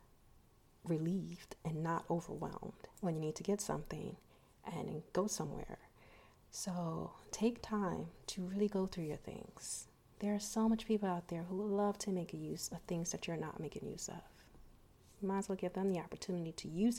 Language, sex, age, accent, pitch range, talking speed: English, female, 30-49, American, 175-210 Hz, 180 wpm